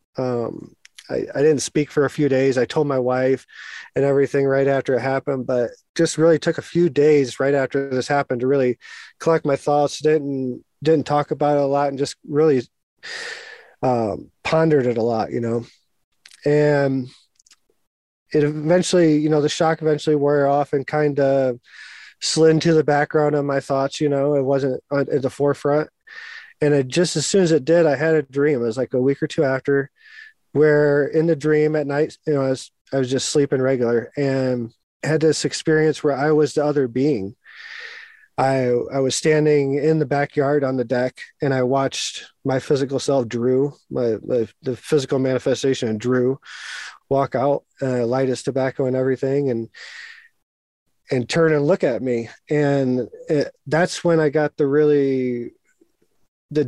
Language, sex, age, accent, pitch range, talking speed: English, male, 20-39, American, 130-150 Hz, 180 wpm